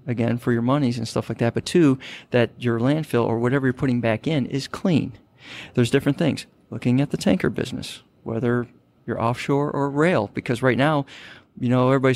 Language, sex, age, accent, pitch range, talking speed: English, male, 40-59, American, 120-135 Hz, 195 wpm